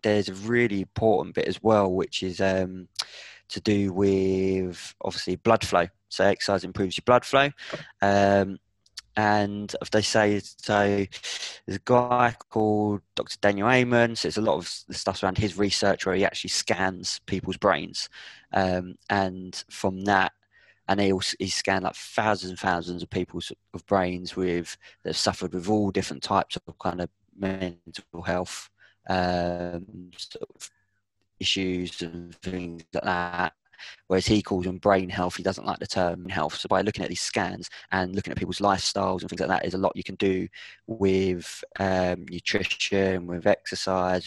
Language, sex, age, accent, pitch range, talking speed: English, male, 20-39, British, 90-100 Hz, 170 wpm